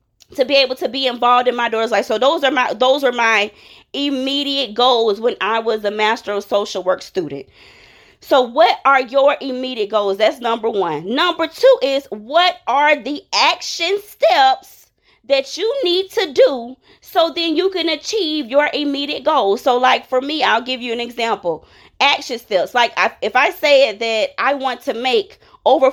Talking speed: 185 wpm